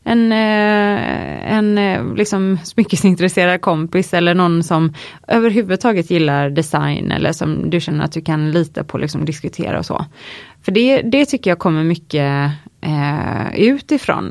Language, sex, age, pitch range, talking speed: Swedish, female, 20-39, 160-200 Hz, 135 wpm